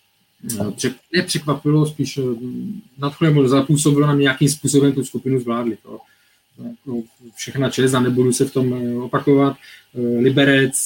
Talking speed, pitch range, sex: 125 wpm, 125-145 Hz, male